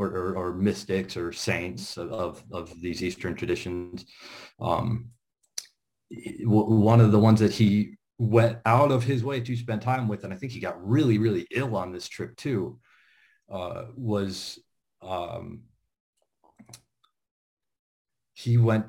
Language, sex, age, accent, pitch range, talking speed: English, male, 40-59, American, 95-120 Hz, 135 wpm